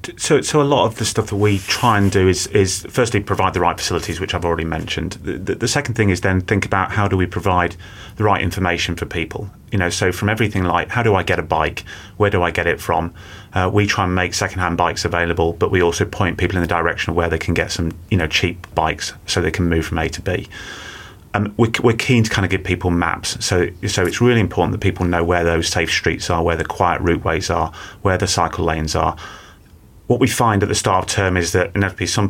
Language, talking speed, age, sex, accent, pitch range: English, 260 wpm, 30-49, male, British, 85-100 Hz